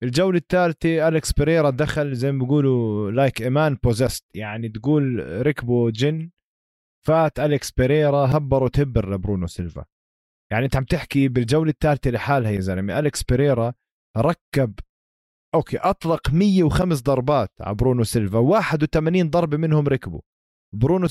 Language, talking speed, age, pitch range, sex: Arabic, 130 wpm, 20-39, 110-155 Hz, male